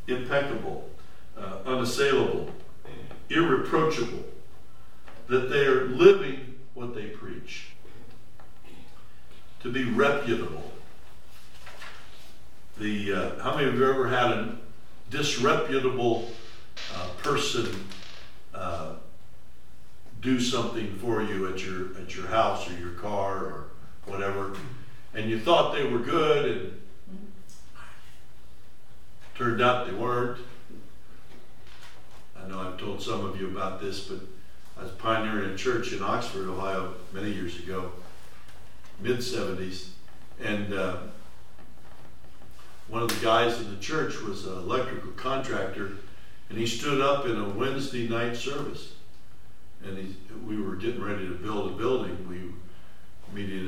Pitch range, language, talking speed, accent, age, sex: 90-120 Hz, English, 120 wpm, American, 60-79, male